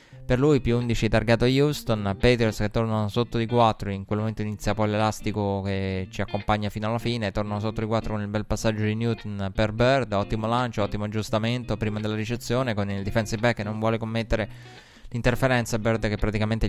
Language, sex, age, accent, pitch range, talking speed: Italian, male, 20-39, native, 105-120 Hz, 200 wpm